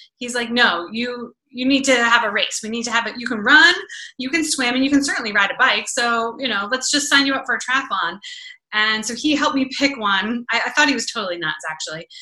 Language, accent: English, American